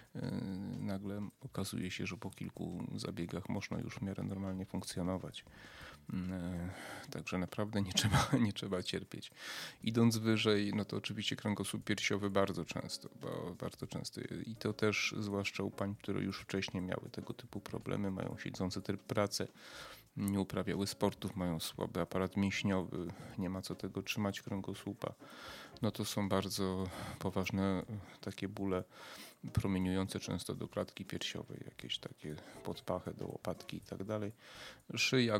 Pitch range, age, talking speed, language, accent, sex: 95-100 Hz, 30-49, 140 wpm, Polish, native, male